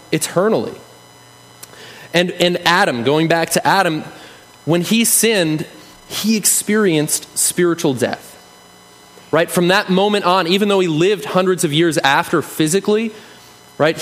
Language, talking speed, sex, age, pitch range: English, 130 wpm, male, 30-49, 135-185 Hz